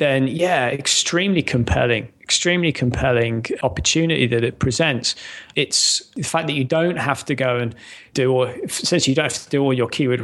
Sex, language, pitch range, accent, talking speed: male, English, 120-150 Hz, British, 180 wpm